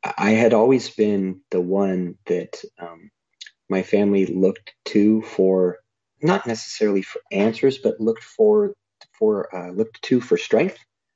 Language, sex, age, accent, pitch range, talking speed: English, male, 30-49, American, 90-110 Hz, 140 wpm